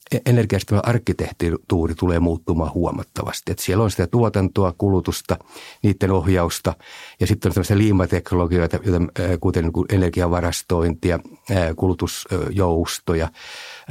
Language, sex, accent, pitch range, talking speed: Finnish, male, native, 85-105 Hz, 90 wpm